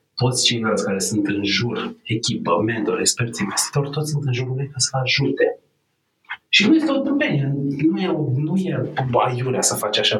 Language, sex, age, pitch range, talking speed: Romanian, male, 30-49, 110-145 Hz, 175 wpm